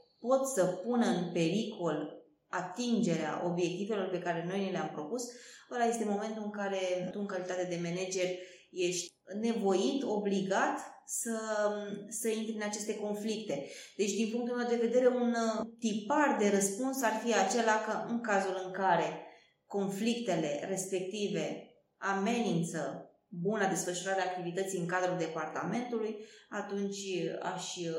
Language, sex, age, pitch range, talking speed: Romanian, female, 20-39, 180-220 Hz, 135 wpm